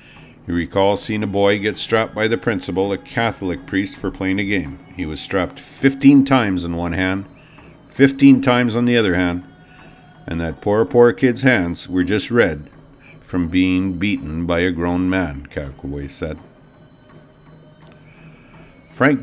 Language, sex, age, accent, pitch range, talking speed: English, male, 50-69, American, 90-115 Hz, 155 wpm